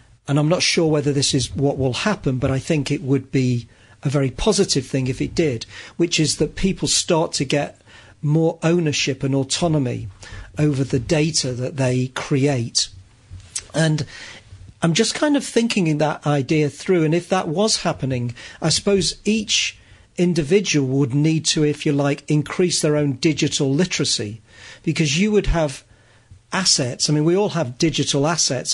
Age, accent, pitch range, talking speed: 40-59, British, 135-165 Hz, 170 wpm